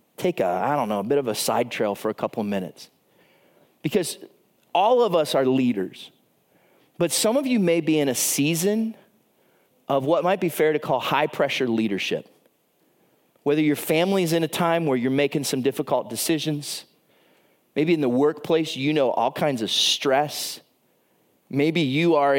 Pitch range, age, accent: 130-180 Hz, 30-49, American